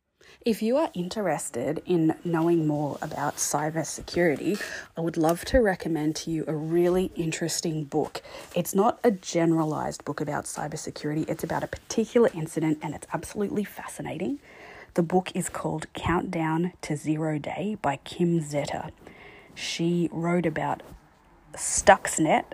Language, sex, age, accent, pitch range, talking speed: English, female, 20-39, Australian, 155-175 Hz, 135 wpm